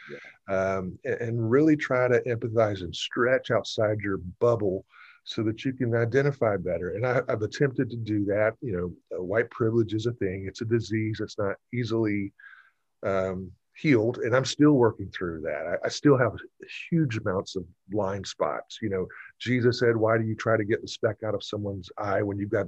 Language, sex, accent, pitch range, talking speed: English, male, American, 95-125 Hz, 200 wpm